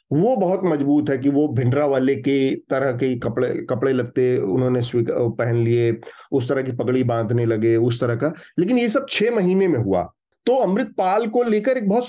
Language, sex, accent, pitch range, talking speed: Hindi, male, native, 130-165 Hz, 195 wpm